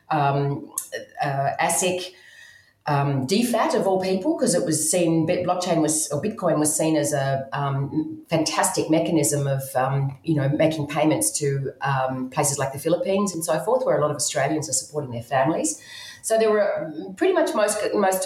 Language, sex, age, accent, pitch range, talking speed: English, female, 40-59, Australian, 145-185 Hz, 180 wpm